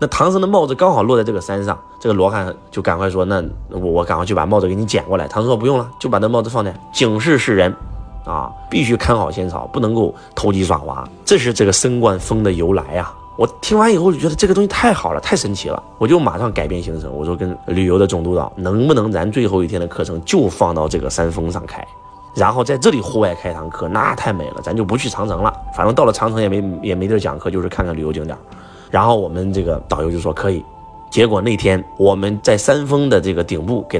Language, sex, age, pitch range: Chinese, male, 20-39, 90-110 Hz